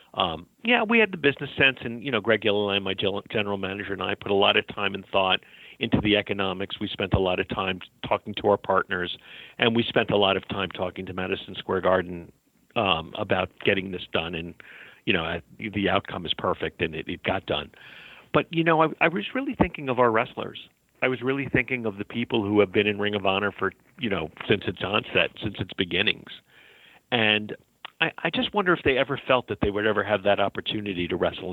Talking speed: 225 wpm